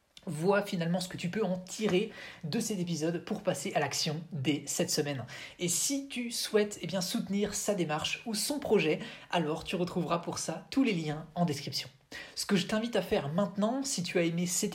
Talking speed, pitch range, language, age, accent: 205 wpm, 165-205 Hz, French, 20-39, French